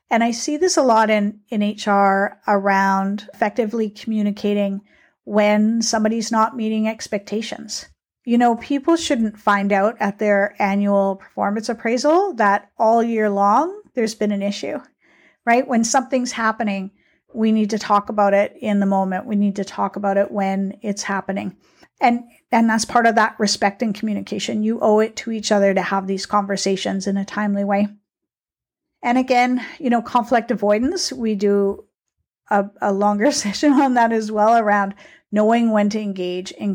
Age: 50-69